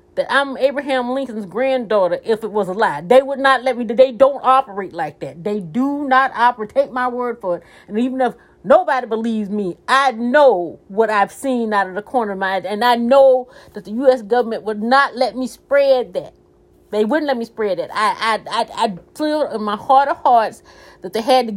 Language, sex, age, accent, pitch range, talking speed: English, female, 40-59, American, 195-260 Hz, 225 wpm